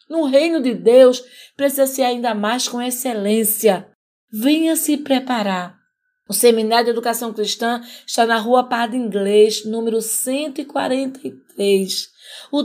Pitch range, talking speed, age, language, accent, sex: 235-285 Hz, 110 wpm, 20-39, Portuguese, Brazilian, female